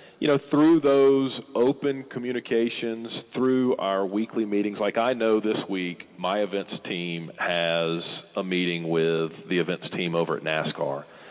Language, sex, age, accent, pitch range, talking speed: English, male, 40-59, American, 90-120 Hz, 150 wpm